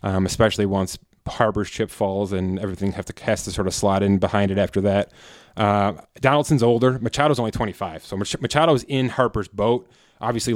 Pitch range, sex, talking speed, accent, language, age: 105-125 Hz, male, 190 wpm, American, English, 20-39